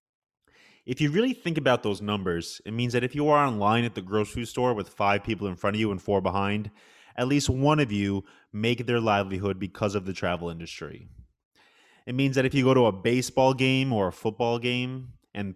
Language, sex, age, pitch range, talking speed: English, male, 20-39, 100-130 Hz, 215 wpm